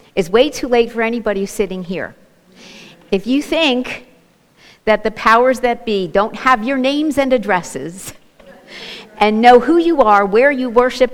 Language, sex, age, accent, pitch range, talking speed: English, female, 50-69, American, 195-245 Hz, 160 wpm